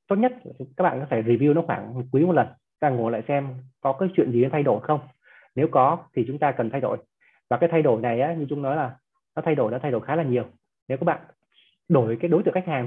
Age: 20-39